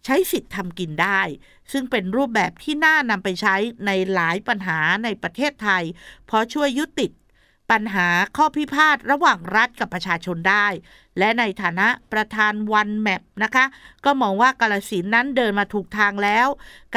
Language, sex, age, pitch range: Thai, female, 50-69, 185-260 Hz